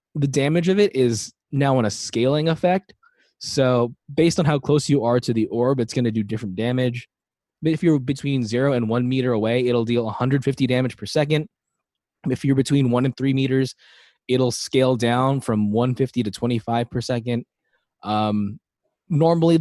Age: 20-39